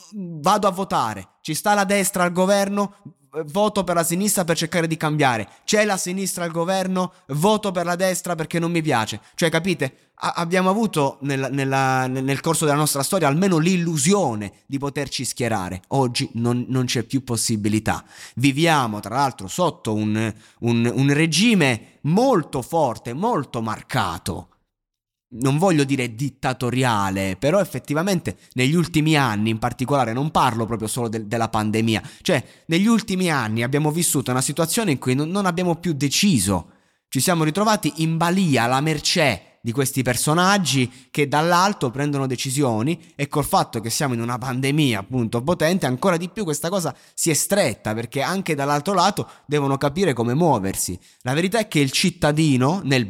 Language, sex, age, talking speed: Italian, male, 20-39, 160 wpm